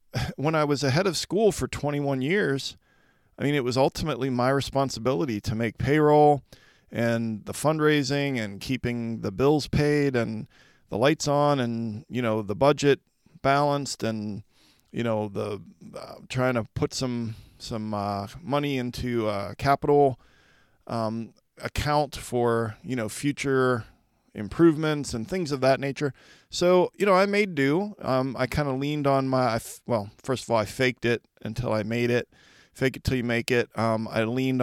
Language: English